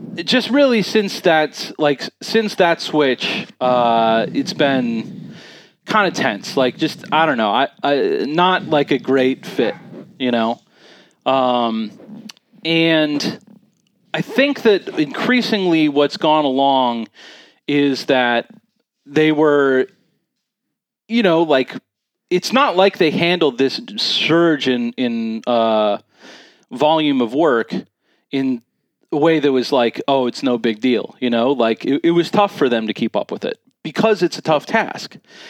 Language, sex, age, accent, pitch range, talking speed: English, male, 30-49, American, 120-175 Hz, 145 wpm